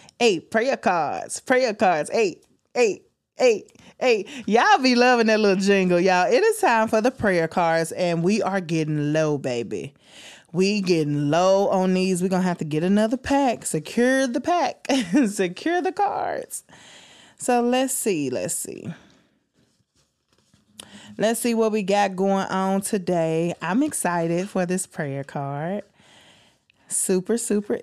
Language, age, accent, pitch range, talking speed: English, 20-39, American, 165-225 Hz, 145 wpm